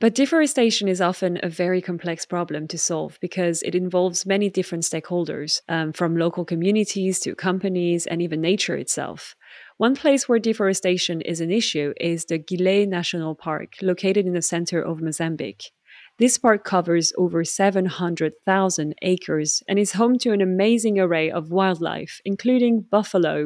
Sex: female